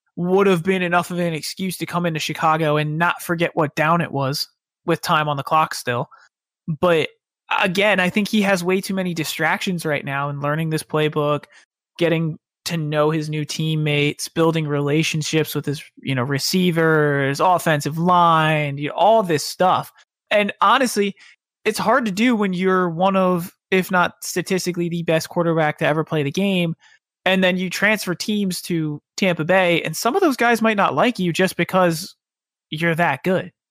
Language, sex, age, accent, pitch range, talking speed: English, male, 20-39, American, 155-190 Hz, 185 wpm